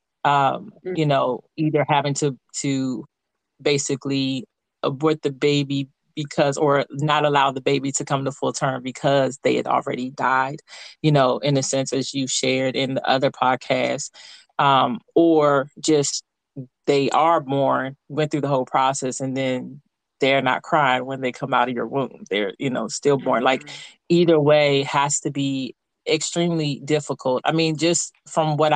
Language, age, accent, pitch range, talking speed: English, 30-49, American, 135-150 Hz, 165 wpm